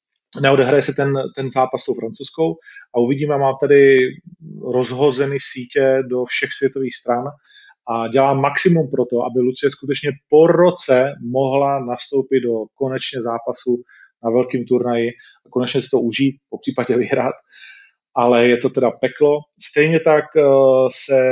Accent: native